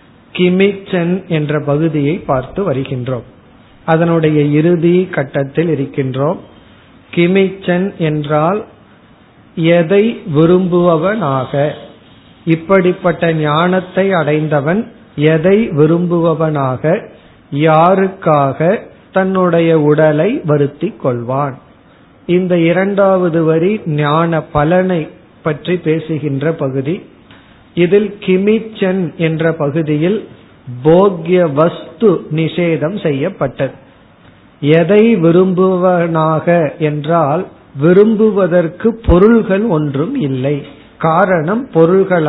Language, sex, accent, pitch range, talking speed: Tamil, male, native, 150-185 Hz, 70 wpm